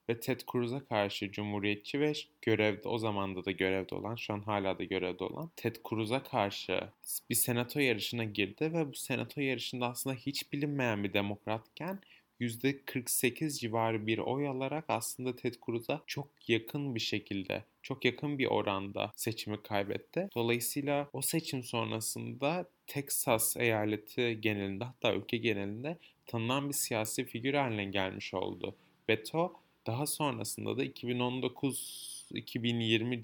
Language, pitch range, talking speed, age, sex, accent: Turkish, 110-135 Hz, 135 wpm, 30-49, male, native